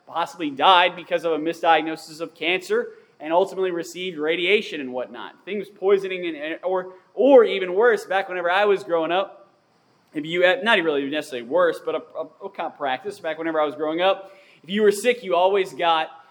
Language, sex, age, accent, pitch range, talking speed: English, male, 20-39, American, 160-215 Hz, 200 wpm